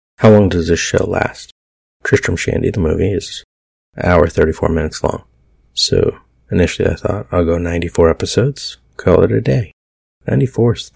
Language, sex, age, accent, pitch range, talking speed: English, male, 30-49, American, 70-90 Hz, 160 wpm